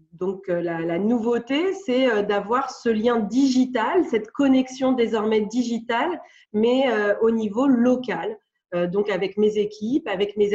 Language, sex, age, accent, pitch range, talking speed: French, female, 40-59, French, 195-245 Hz, 140 wpm